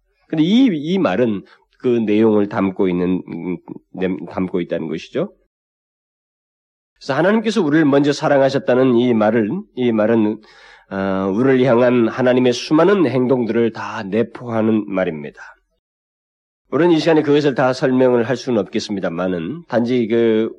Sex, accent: male, native